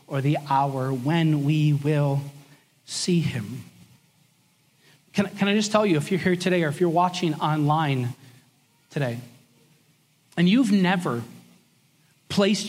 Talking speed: 130 wpm